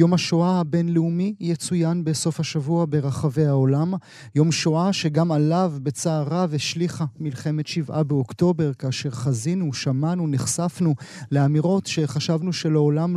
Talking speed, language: 115 wpm, Hebrew